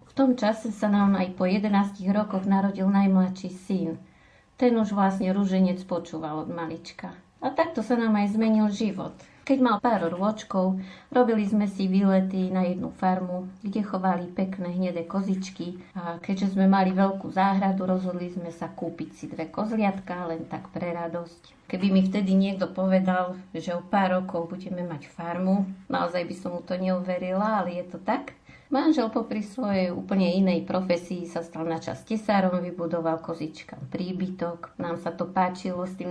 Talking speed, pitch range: 165 wpm, 180-205 Hz